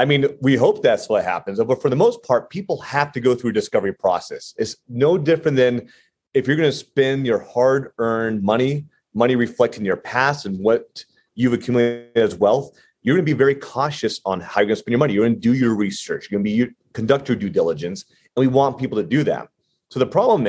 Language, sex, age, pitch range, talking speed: English, male, 30-49, 105-140 Hz, 235 wpm